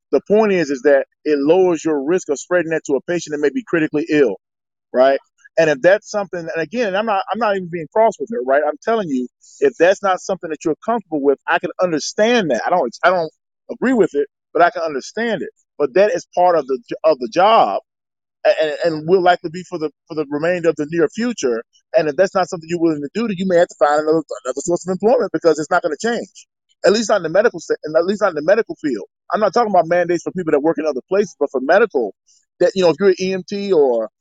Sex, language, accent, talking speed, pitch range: male, English, American, 265 wpm, 160-210 Hz